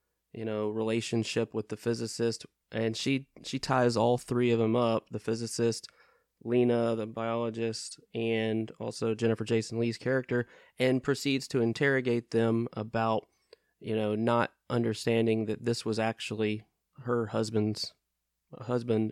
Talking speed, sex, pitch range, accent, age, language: 135 wpm, male, 110-125 Hz, American, 20-39, English